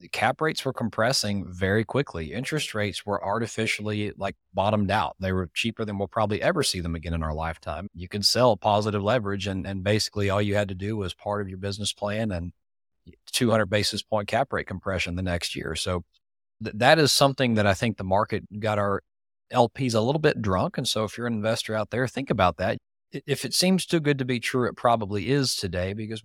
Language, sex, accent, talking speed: English, male, American, 220 wpm